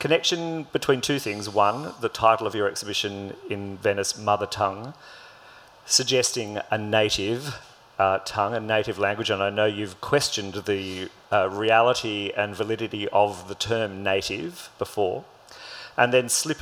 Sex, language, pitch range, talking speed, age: male, English, 100-120 Hz, 145 wpm, 40-59